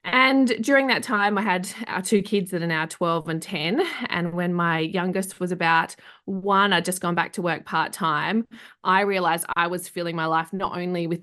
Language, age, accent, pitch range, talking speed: English, 20-39, Australian, 165-195 Hz, 210 wpm